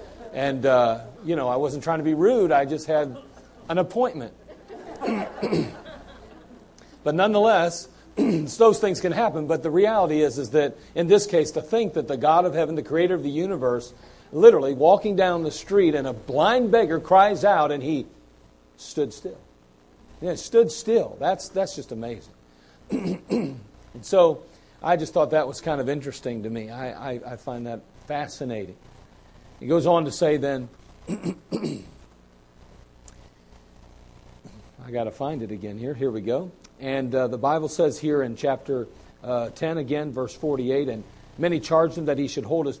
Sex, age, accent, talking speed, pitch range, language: male, 40-59, American, 170 wpm, 115-175 Hz, English